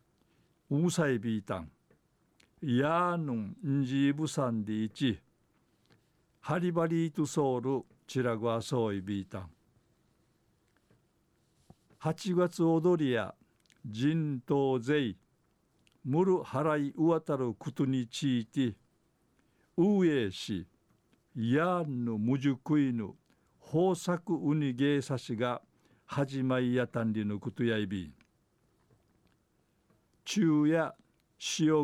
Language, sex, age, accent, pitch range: Japanese, male, 50-69, native, 120-155 Hz